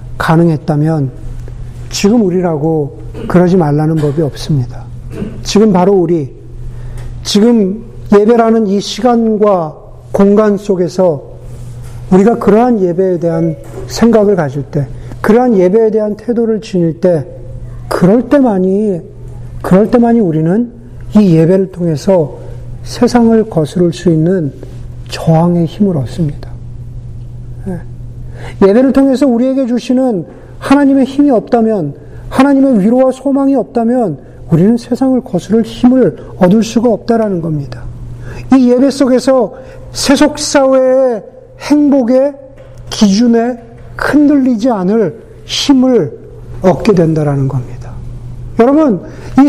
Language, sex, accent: Korean, male, native